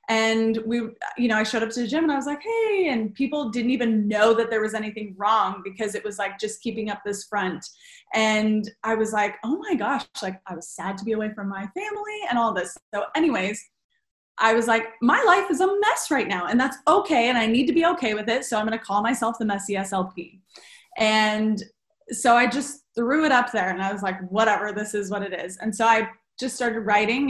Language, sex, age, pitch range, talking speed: English, female, 20-39, 200-235 Hz, 240 wpm